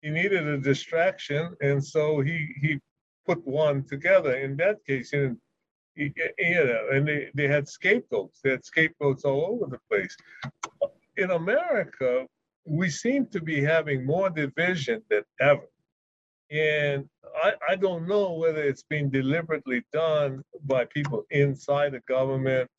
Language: English